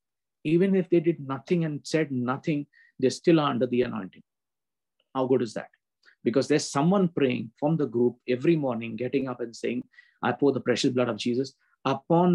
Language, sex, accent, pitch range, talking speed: English, male, Indian, 120-145 Hz, 190 wpm